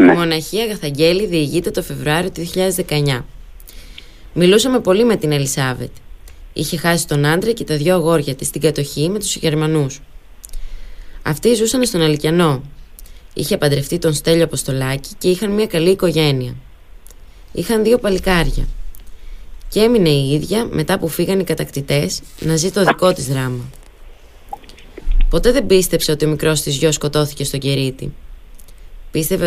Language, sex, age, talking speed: Greek, female, 20-39, 140 wpm